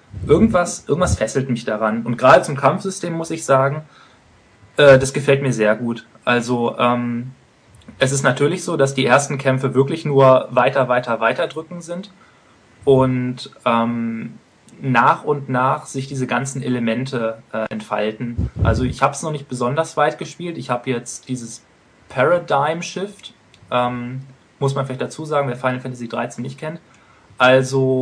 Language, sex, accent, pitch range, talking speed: German, male, German, 120-145 Hz, 160 wpm